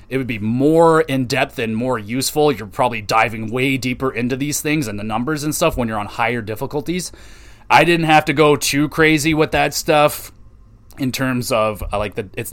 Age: 30-49